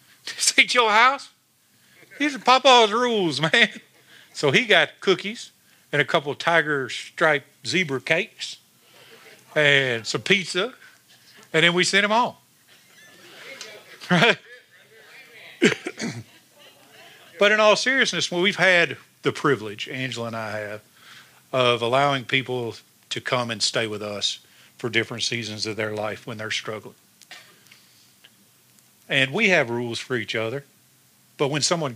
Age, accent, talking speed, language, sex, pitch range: 50-69, American, 130 wpm, English, male, 120-175 Hz